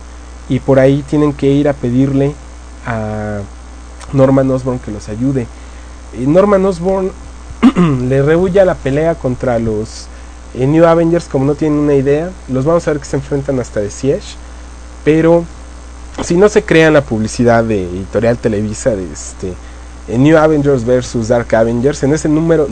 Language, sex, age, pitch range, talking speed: English, male, 30-49, 95-150 Hz, 160 wpm